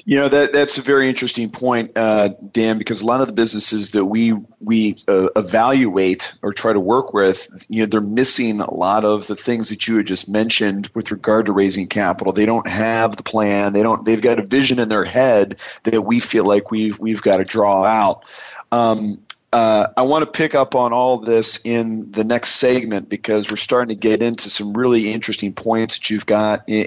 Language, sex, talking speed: English, male, 220 wpm